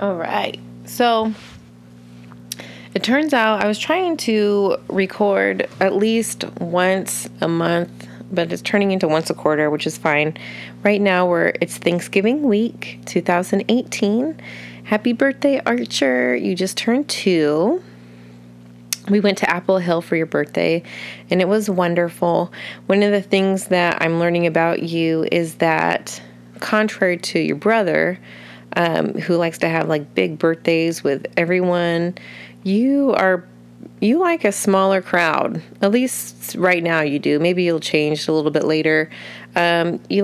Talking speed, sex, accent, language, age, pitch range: 145 wpm, female, American, English, 30-49, 145-200 Hz